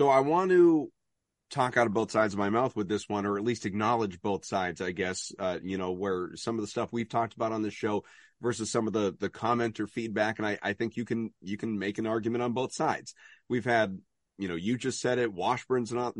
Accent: American